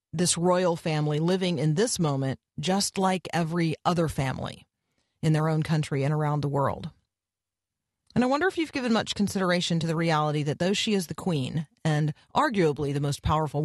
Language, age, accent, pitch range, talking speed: English, 40-59, American, 125-175 Hz, 185 wpm